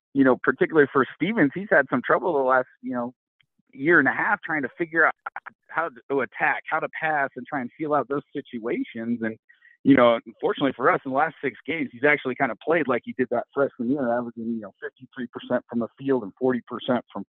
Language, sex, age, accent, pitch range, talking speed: English, male, 40-59, American, 120-145 Hz, 235 wpm